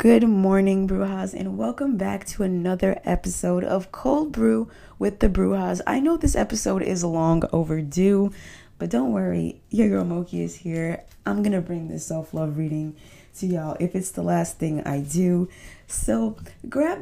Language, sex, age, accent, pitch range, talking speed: English, female, 20-39, American, 155-230 Hz, 170 wpm